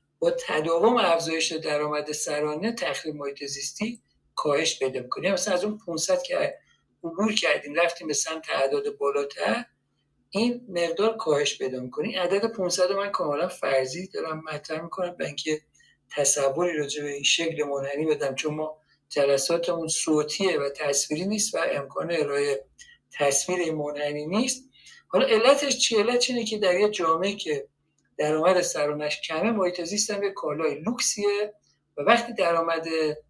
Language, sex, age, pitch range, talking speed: Persian, male, 50-69, 150-210 Hz, 135 wpm